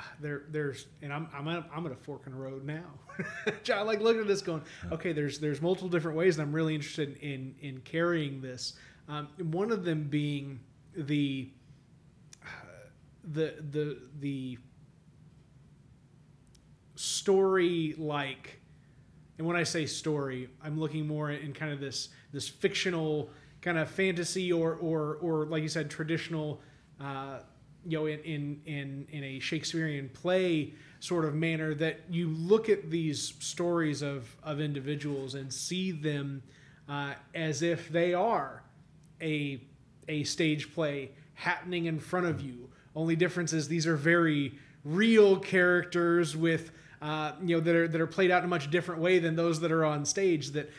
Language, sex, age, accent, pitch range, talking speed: English, male, 30-49, American, 145-170 Hz, 165 wpm